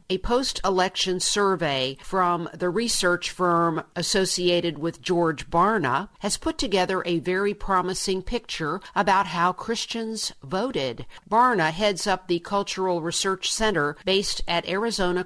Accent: American